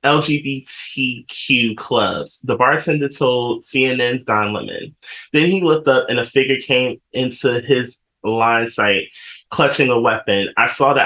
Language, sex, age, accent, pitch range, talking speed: English, male, 20-39, American, 105-125 Hz, 140 wpm